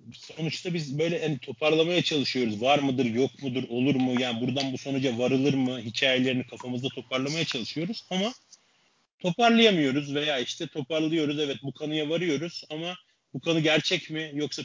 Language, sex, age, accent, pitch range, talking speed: Turkish, male, 30-49, native, 120-150 Hz, 150 wpm